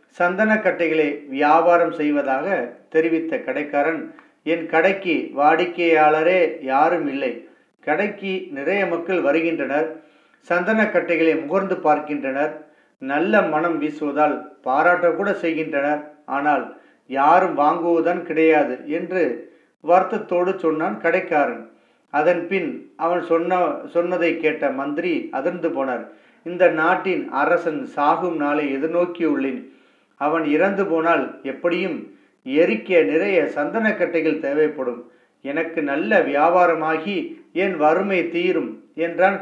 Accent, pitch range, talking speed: native, 155-190 Hz, 95 wpm